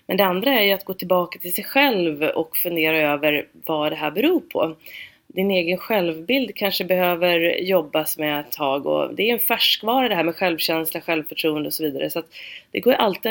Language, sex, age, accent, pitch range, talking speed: Swedish, female, 30-49, native, 160-205 Hz, 210 wpm